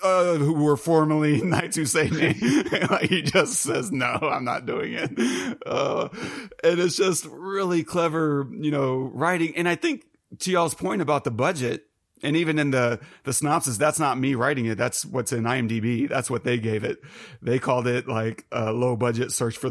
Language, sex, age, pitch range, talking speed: English, male, 30-49, 115-145 Hz, 190 wpm